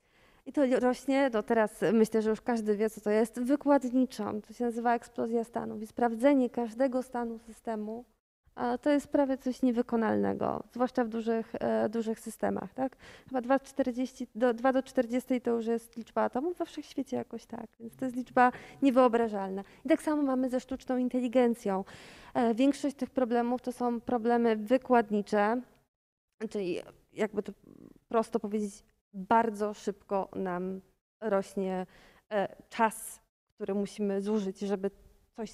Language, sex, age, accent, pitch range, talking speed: Polish, female, 20-39, native, 220-260 Hz, 135 wpm